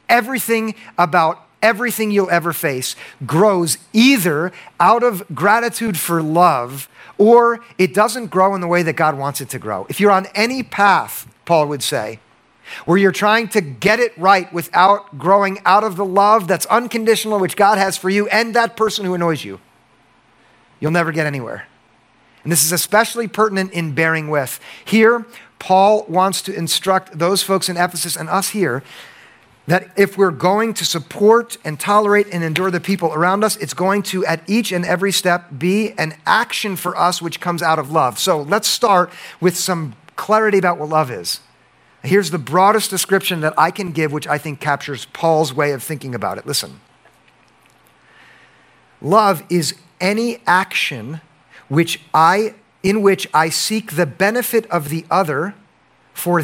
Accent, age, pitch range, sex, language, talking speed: American, 50-69, 155-205 Hz, male, English, 170 wpm